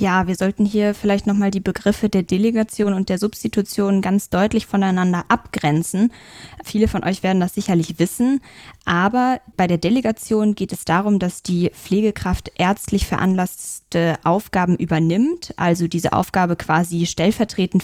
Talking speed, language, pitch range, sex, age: 150 wpm, German, 175-205 Hz, female, 20-39